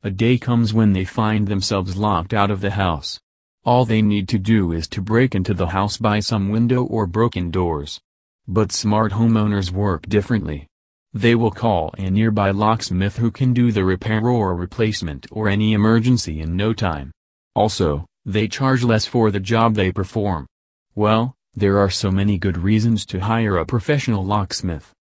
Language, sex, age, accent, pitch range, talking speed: English, male, 40-59, American, 95-110 Hz, 175 wpm